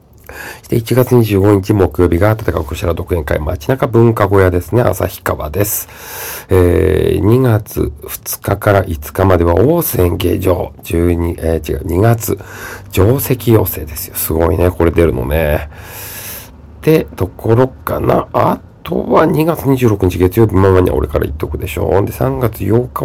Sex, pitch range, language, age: male, 90-115 Hz, Japanese, 50-69